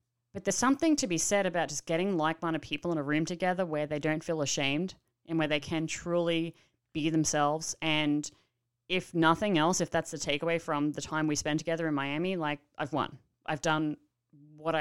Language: English